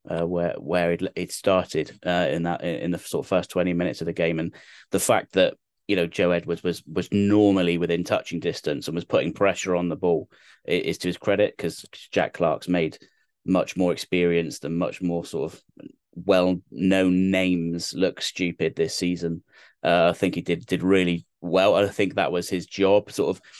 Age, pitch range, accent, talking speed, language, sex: 30-49, 85-95 Hz, British, 200 wpm, English, male